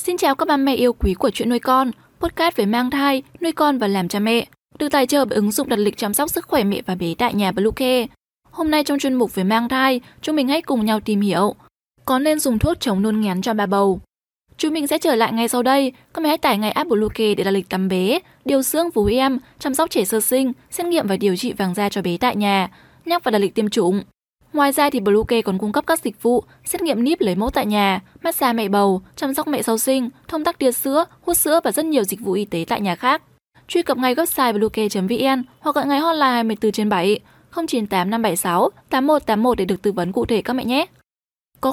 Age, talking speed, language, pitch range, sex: 10-29, 255 wpm, Vietnamese, 205-280 Hz, female